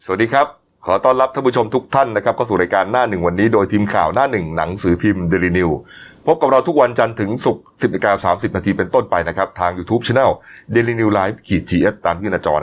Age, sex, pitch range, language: 30-49, male, 90-120 Hz, Thai